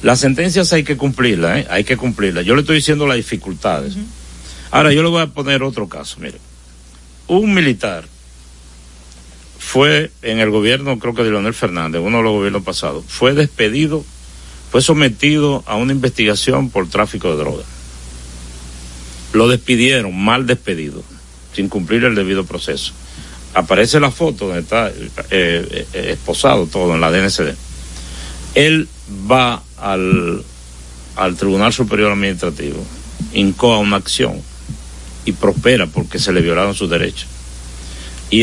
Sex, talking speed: male, 140 wpm